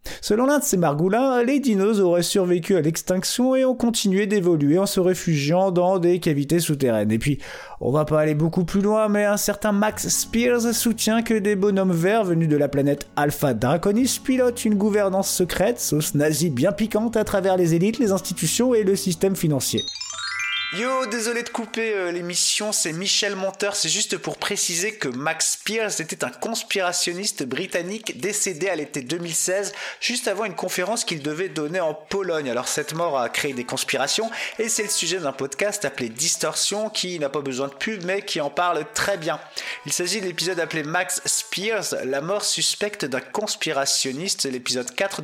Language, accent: French, French